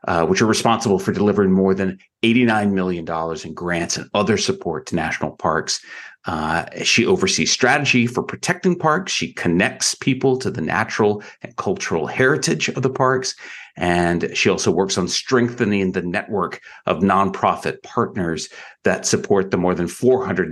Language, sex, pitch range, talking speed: English, male, 90-130 Hz, 160 wpm